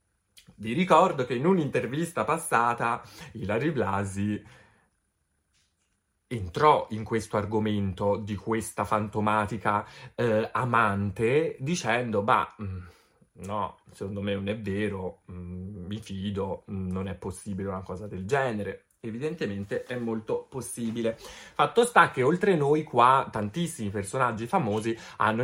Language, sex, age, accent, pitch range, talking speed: Italian, male, 30-49, native, 100-130 Hz, 115 wpm